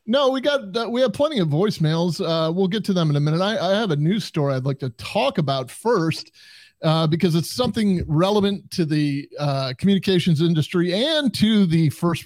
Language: English